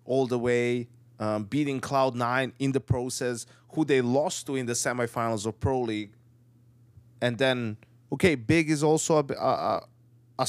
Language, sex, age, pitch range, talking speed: English, male, 20-39, 120-130 Hz, 160 wpm